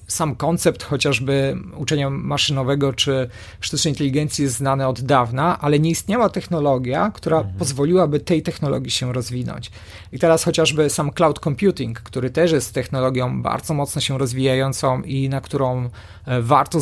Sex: male